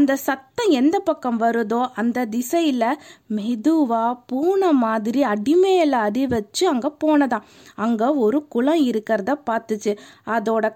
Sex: female